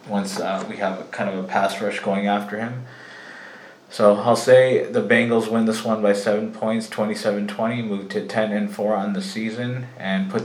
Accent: American